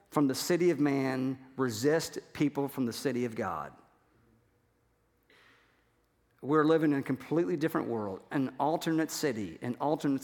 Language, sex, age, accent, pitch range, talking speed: English, male, 50-69, American, 130-155 Hz, 140 wpm